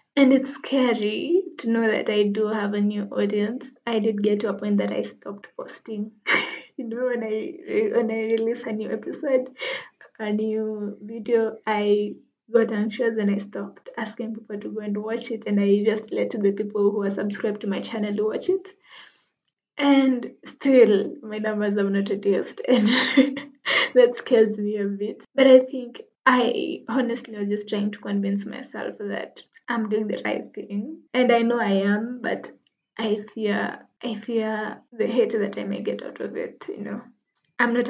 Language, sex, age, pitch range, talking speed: English, female, 20-39, 210-245 Hz, 185 wpm